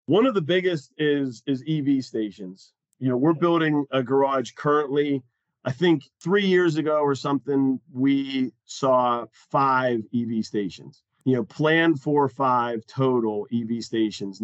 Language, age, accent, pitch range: English, 40-59, American, 120-150 Hz